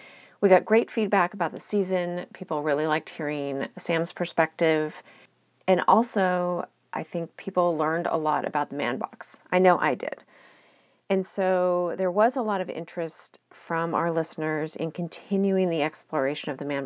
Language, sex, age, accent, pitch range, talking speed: English, female, 40-59, American, 155-190 Hz, 165 wpm